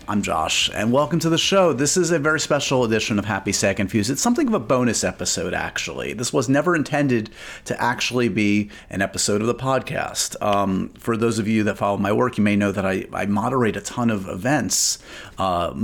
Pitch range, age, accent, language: 95-120 Hz, 30-49, American, English